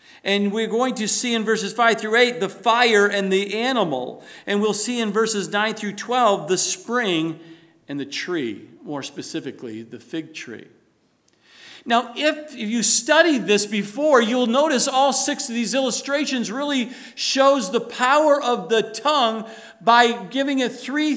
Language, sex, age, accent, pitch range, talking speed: English, male, 50-69, American, 220-275 Hz, 160 wpm